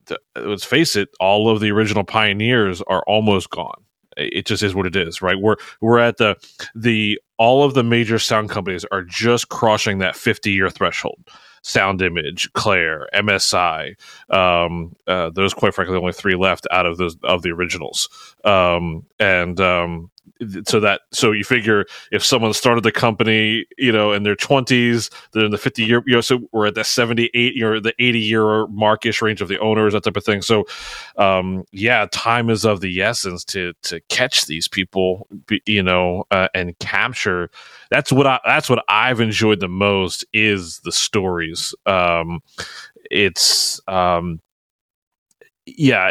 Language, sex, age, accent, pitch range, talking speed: English, male, 30-49, American, 90-115 Hz, 170 wpm